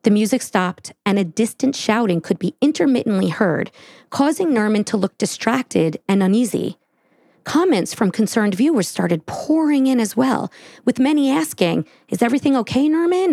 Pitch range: 185-255 Hz